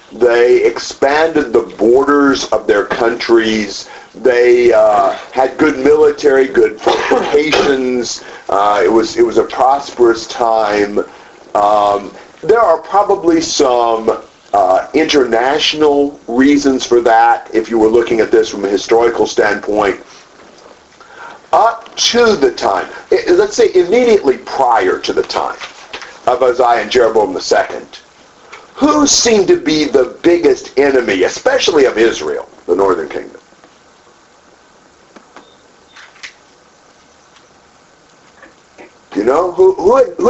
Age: 50-69